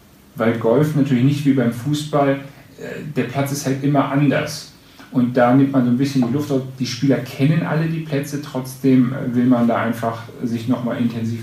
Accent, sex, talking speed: German, male, 195 wpm